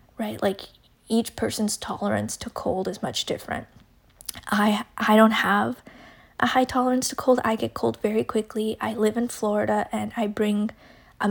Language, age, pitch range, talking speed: English, 10-29, 205-230 Hz, 170 wpm